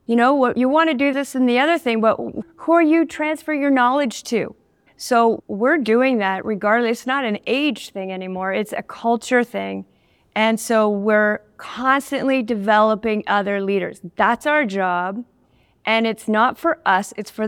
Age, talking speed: 40-59, 180 wpm